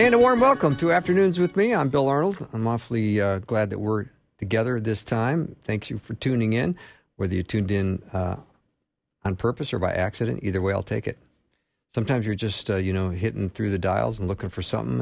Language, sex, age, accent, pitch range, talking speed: English, male, 50-69, American, 95-120 Hz, 215 wpm